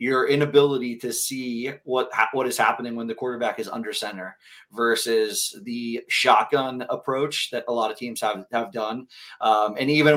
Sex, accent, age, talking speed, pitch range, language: male, American, 30-49, 170 wpm, 115-140 Hz, English